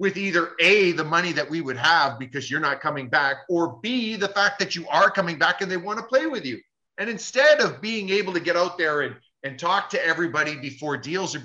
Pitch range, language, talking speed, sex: 170-230 Hz, English, 245 wpm, male